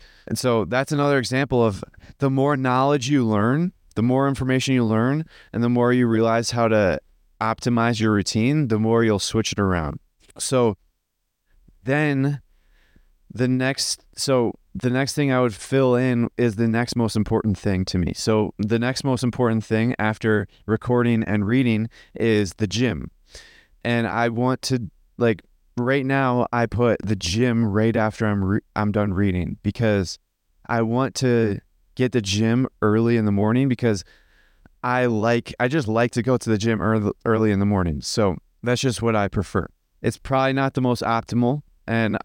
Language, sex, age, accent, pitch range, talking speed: English, male, 20-39, American, 105-125 Hz, 175 wpm